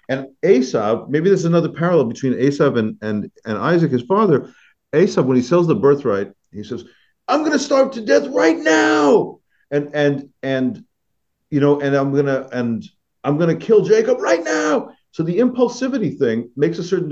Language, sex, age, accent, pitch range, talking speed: English, male, 50-69, American, 115-165 Hz, 180 wpm